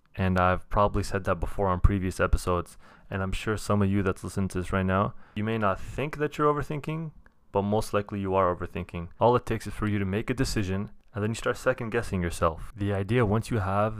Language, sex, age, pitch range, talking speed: English, male, 20-39, 95-110 Hz, 235 wpm